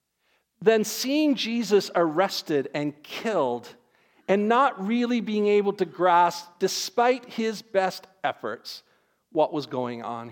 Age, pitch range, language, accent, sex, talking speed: 50-69, 140-195 Hz, English, American, male, 120 wpm